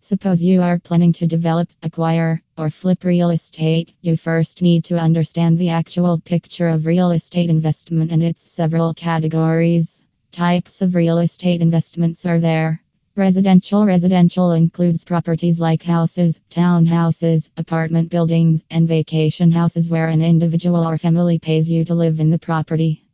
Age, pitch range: 20-39, 165-175 Hz